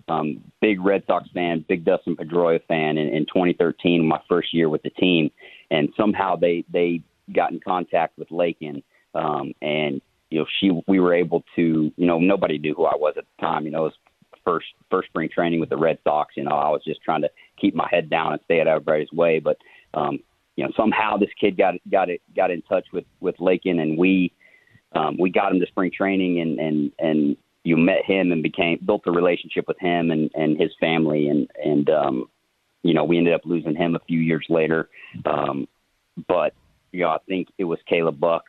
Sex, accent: male, American